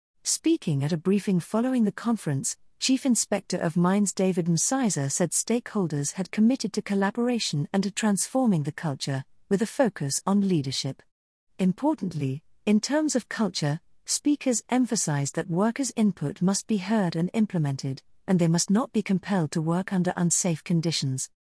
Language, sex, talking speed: English, female, 155 wpm